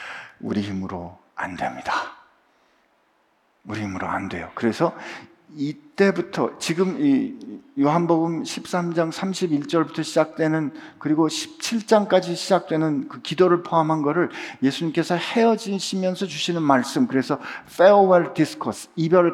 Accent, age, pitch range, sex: native, 50-69, 150-220 Hz, male